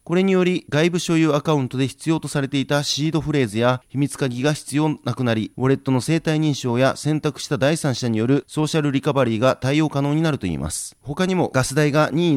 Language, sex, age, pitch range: Japanese, male, 30-49, 125-150 Hz